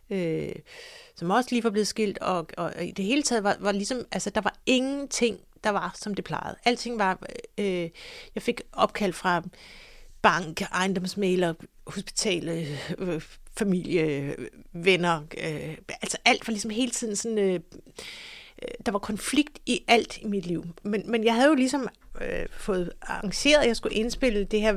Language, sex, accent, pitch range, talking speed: Danish, female, native, 190-250 Hz, 175 wpm